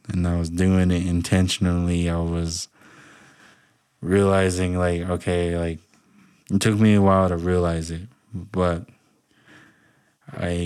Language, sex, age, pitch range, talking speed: English, male, 20-39, 85-95 Hz, 125 wpm